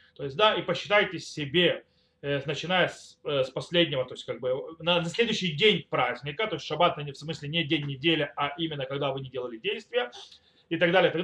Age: 30-49